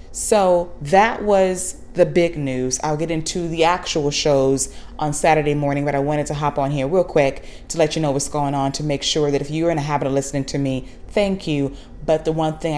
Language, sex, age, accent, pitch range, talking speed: English, female, 20-39, American, 145-170 Hz, 235 wpm